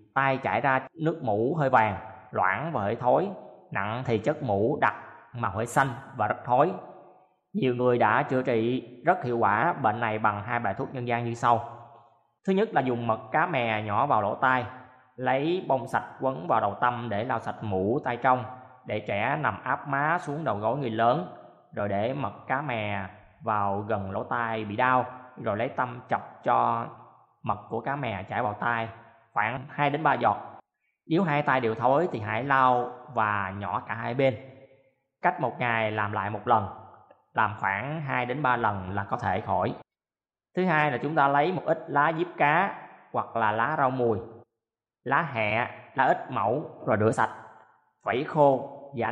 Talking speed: 195 wpm